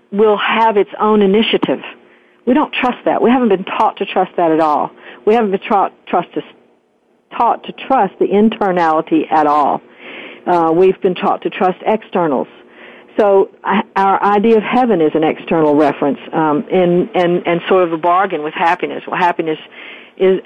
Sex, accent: female, American